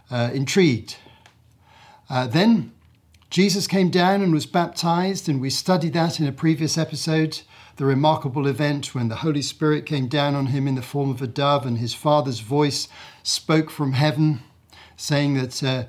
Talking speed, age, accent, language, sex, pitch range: 170 wpm, 50-69, British, English, male, 135-155 Hz